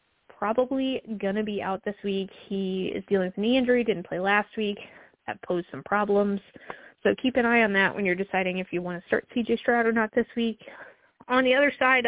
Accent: American